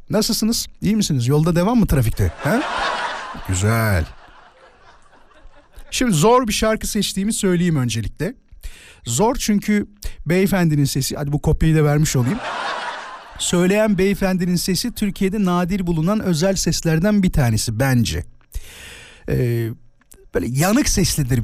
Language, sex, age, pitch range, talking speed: Turkish, male, 50-69, 120-205 Hz, 115 wpm